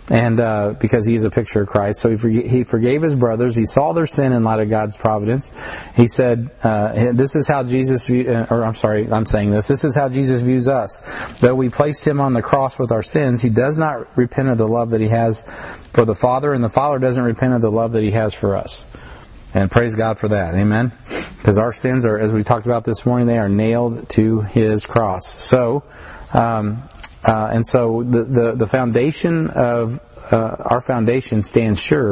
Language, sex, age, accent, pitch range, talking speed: English, male, 40-59, American, 110-130 Hz, 220 wpm